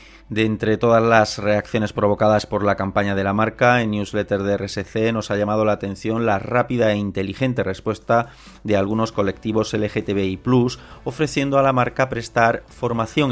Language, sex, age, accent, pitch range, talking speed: Spanish, male, 30-49, Spanish, 95-115 Hz, 160 wpm